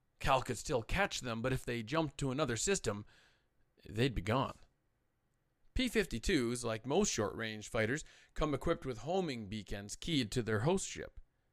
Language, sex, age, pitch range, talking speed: English, male, 40-59, 110-140 Hz, 155 wpm